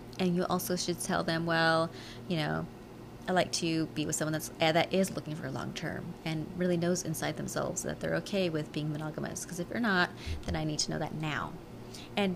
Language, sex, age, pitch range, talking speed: English, female, 30-49, 150-175 Hz, 220 wpm